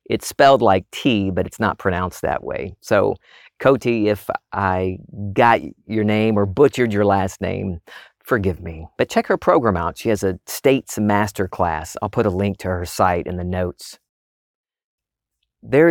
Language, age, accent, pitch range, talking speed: English, 40-59, American, 100-130 Hz, 170 wpm